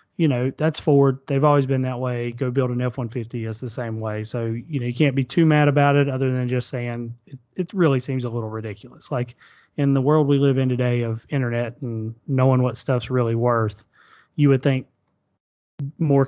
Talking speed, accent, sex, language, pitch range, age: 220 wpm, American, male, English, 120-145 Hz, 30-49